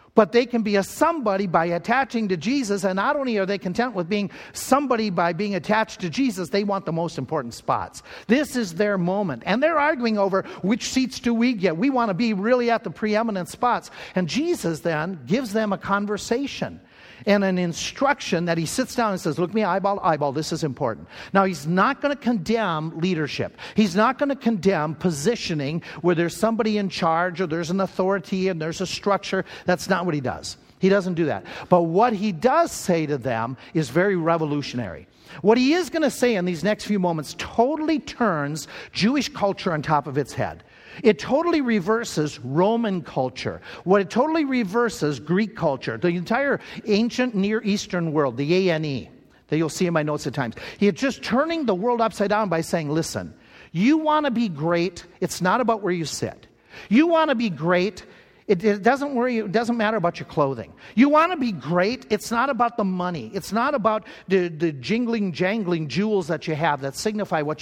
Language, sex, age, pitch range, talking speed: English, male, 50-69, 170-230 Hz, 205 wpm